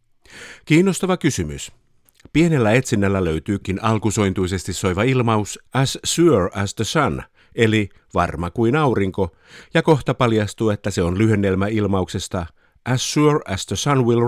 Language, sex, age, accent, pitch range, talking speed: Finnish, male, 50-69, native, 95-125 Hz, 130 wpm